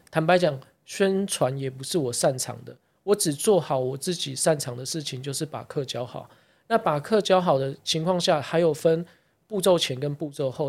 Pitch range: 140-175 Hz